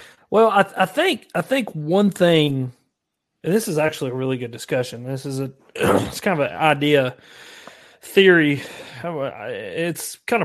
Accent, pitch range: American, 140-185 Hz